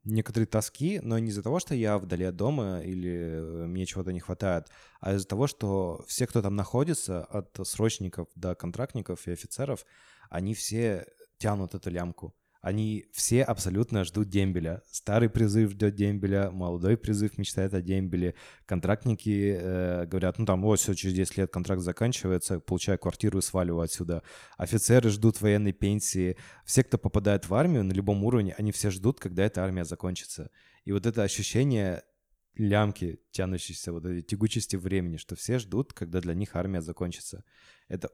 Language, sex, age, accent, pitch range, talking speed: Russian, male, 20-39, native, 90-110 Hz, 165 wpm